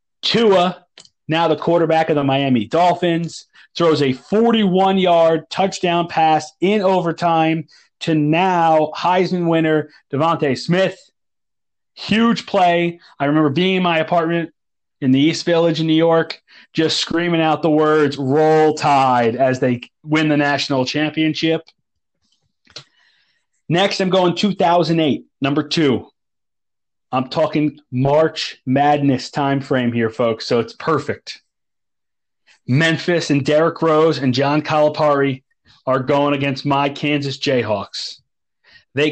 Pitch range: 140-170 Hz